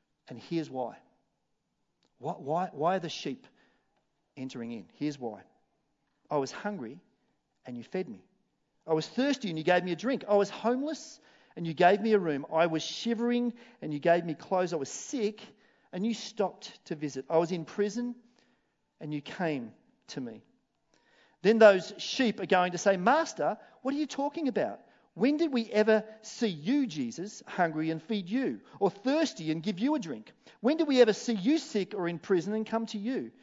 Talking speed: 190 wpm